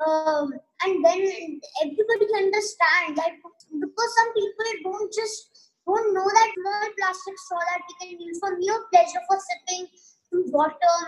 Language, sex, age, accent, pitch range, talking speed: English, male, 20-39, Indian, 330-415 Hz, 140 wpm